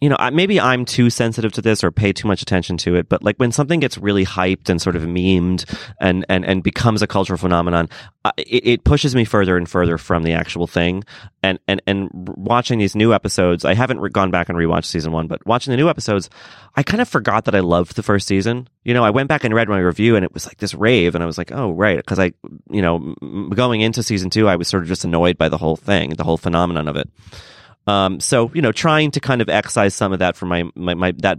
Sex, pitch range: male, 85-115 Hz